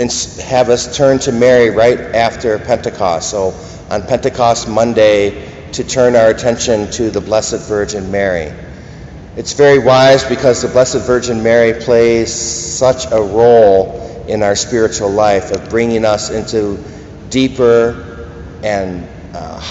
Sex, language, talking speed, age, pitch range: male, English, 135 wpm, 50-69, 100-120 Hz